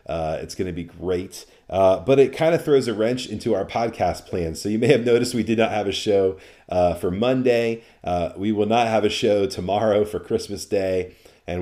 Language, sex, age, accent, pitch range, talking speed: English, male, 40-59, American, 90-120 Hz, 225 wpm